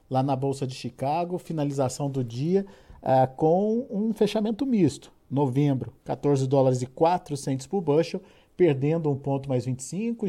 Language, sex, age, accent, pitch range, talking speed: Portuguese, male, 50-69, Brazilian, 135-175 Hz, 145 wpm